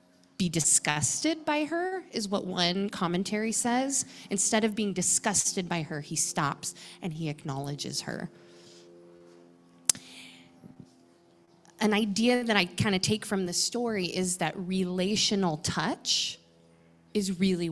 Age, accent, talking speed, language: 20-39, American, 125 wpm, English